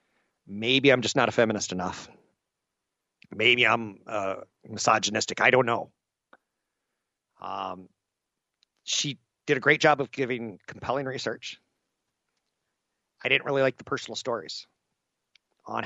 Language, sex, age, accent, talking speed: English, male, 40-59, American, 120 wpm